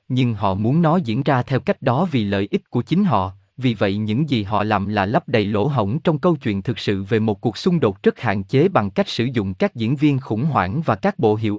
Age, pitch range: 20-39, 105-155 Hz